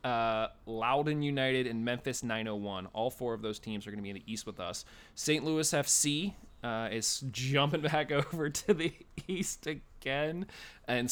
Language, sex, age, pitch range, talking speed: English, male, 20-39, 105-140 Hz, 180 wpm